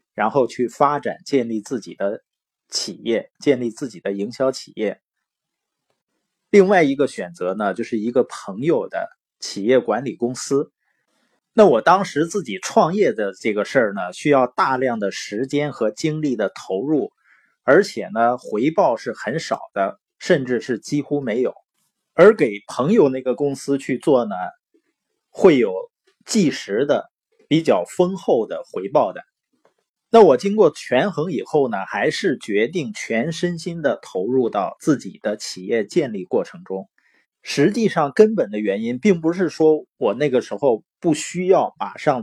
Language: Chinese